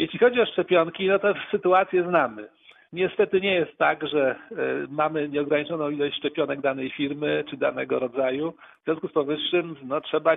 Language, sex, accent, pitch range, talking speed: Polish, male, native, 135-160 Hz, 155 wpm